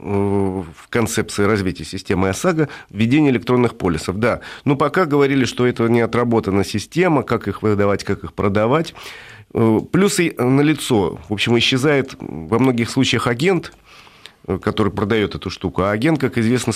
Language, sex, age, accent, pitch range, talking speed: Russian, male, 40-59, native, 100-135 Hz, 145 wpm